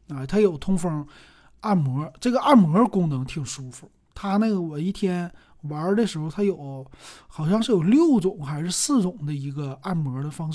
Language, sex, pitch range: Chinese, male, 150-205 Hz